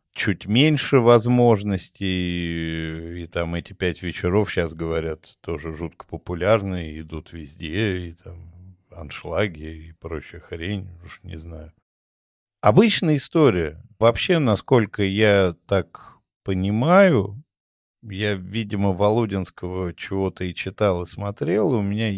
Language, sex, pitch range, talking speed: Russian, male, 85-105 Hz, 110 wpm